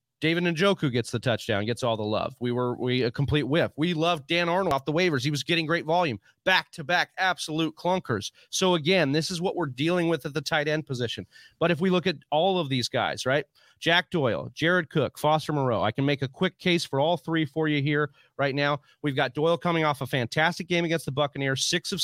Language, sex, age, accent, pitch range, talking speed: English, male, 30-49, American, 130-165 Hz, 235 wpm